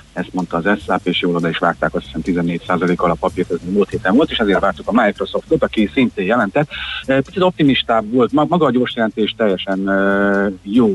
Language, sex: Hungarian, male